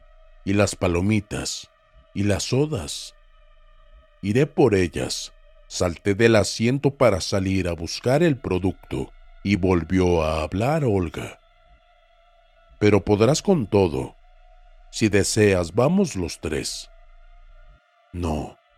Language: Spanish